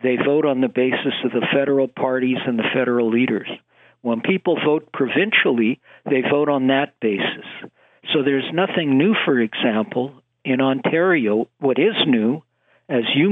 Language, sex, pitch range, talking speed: English, male, 120-145 Hz, 160 wpm